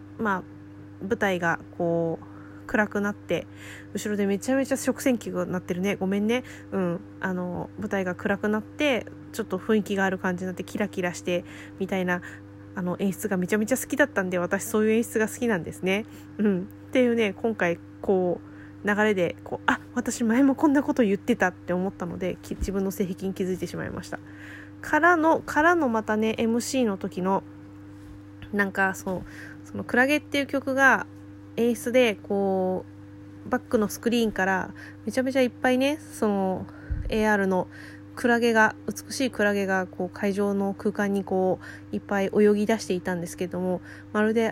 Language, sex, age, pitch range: Japanese, female, 20-39, 170-220 Hz